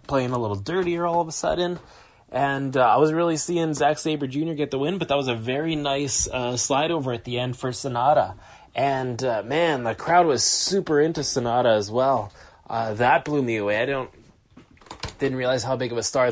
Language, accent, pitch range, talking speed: English, American, 115-145 Hz, 215 wpm